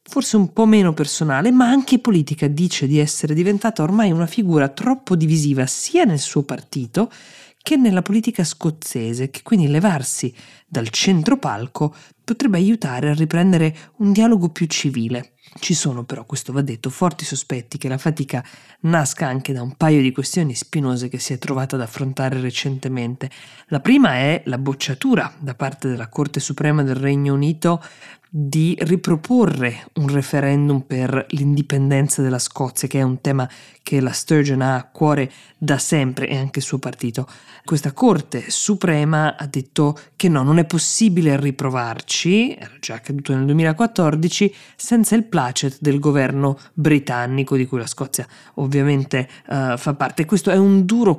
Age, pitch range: 20-39, 135-170 Hz